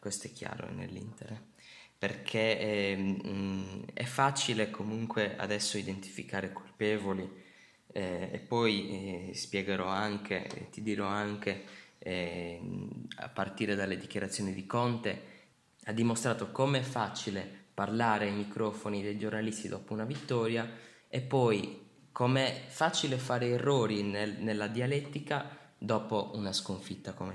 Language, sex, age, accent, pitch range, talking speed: Italian, male, 20-39, native, 100-120 Hz, 120 wpm